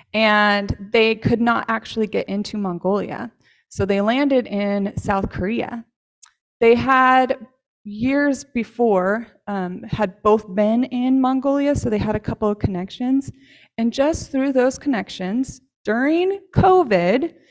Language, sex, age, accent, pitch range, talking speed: English, female, 20-39, American, 195-250 Hz, 130 wpm